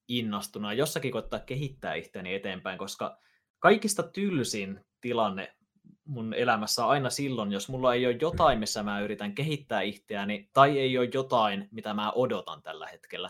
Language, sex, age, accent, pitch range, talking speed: Finnish, male, 20-39, native, 105-145 Hz, 155 wpm